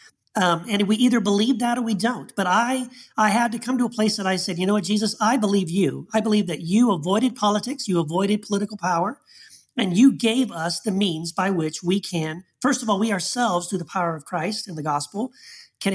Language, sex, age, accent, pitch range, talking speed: English, male, 40-59, American, 175-235 Hz, 235 wpm